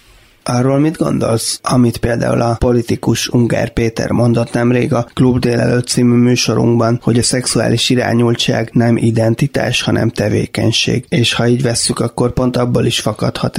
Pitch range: 115-125 Hz